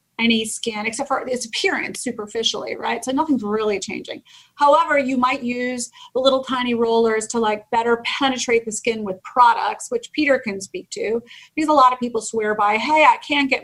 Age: 30-49